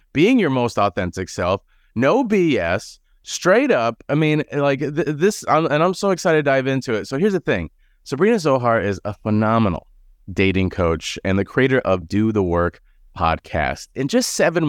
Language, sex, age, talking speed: English, male, 30-49, 175 wpm